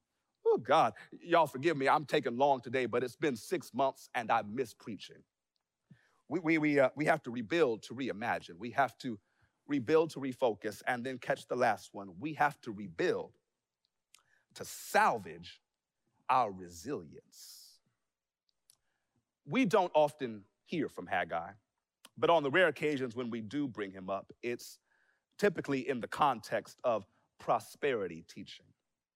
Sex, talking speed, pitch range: male, 150 wpm, 110-150 Hz